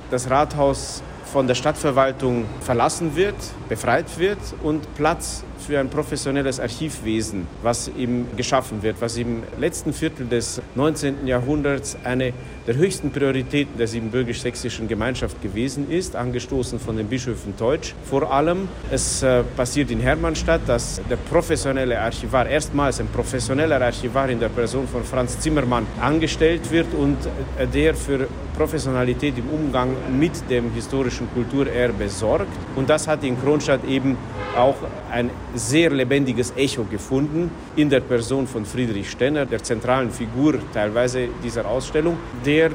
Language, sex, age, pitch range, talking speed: German, male, 50-69, 120-145 Hz, 140 wpm